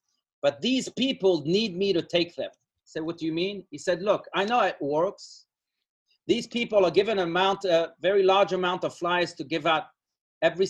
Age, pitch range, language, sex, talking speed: 30-49, 165-195 Hz, English, male, 195 wpm